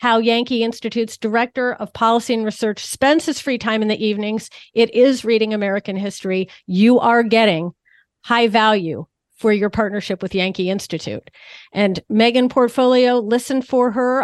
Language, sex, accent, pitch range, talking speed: English, female, American, 205-240 Hz, 155 wpm